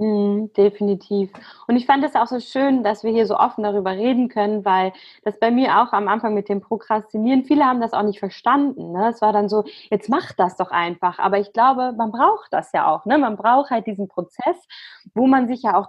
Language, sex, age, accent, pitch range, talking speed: German, female, 20-39, German, 205-265 Hz, 230 wpm